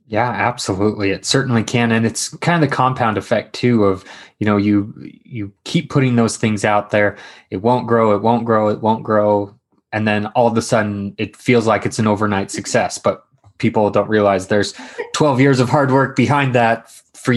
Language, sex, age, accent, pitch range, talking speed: English, male, 20-39, American, 100-120 Hz, 205 wpm